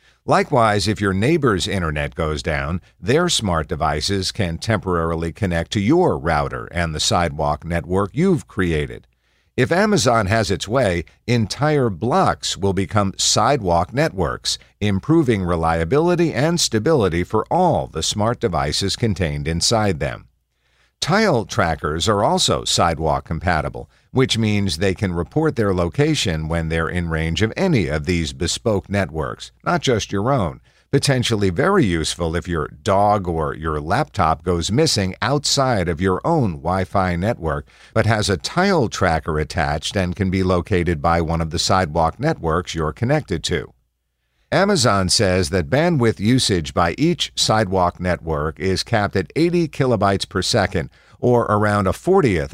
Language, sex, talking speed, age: English, male, 145 wpm, 50-69